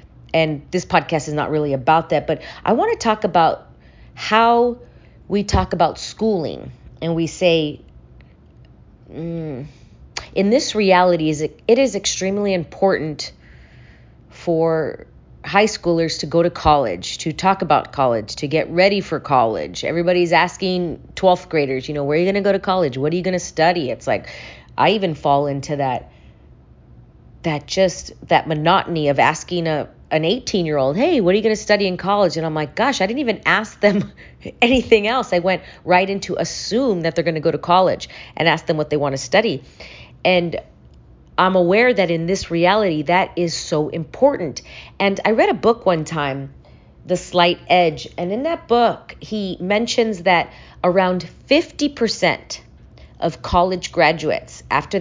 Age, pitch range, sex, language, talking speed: 30-49, 155-195 Hz, female, English, 175 wpm